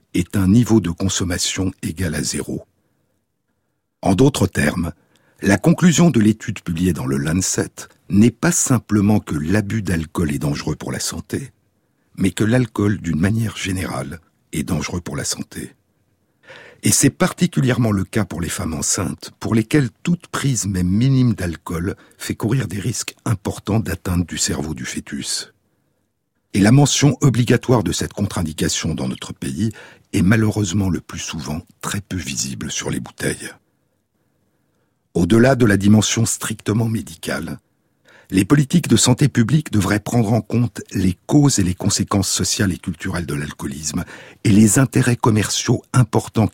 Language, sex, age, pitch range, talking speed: French, male, 60-79, 90-120 Hz, 150 wpm